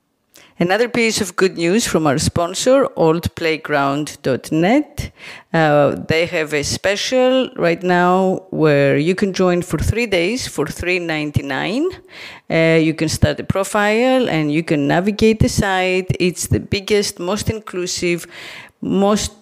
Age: 50-69